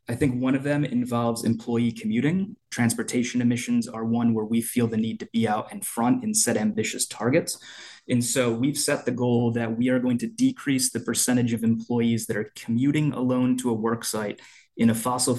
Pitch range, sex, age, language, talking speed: 110-125 Hz, male, 20-39, English, 205 wpm